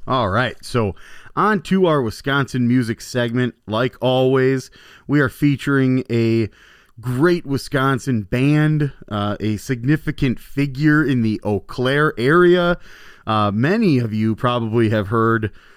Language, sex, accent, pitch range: English, male, American, 105-130 Hz